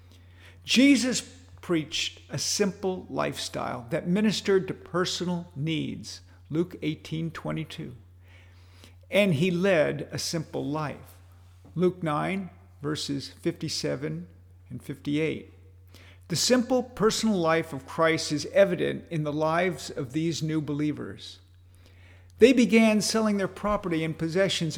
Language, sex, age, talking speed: English, male, 50-69, 115 wpm